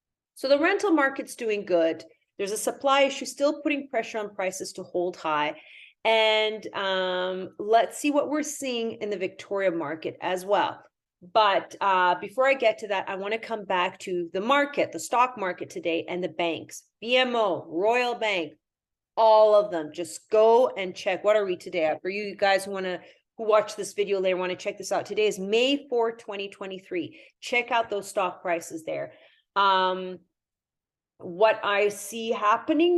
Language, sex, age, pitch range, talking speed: English, female, 40-59, 190-250 Hz, 175 wpm